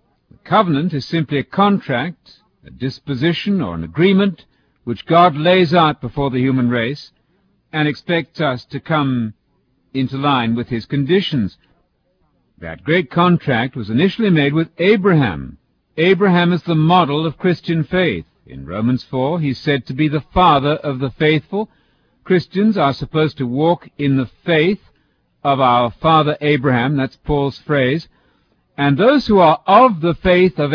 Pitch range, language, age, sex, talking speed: 135-175 Hz, English, 60-79, male, 155 wpm